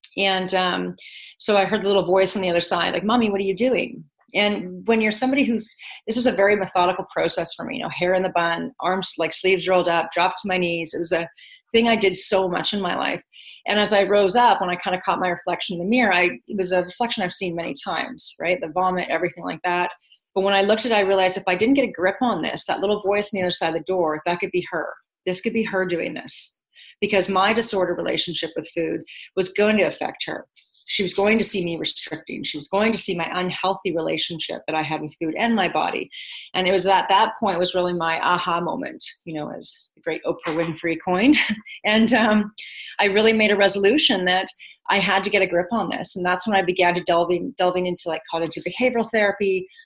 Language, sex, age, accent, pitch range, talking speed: English, female, 30-49, American, 175-210 Hz, 245 wpm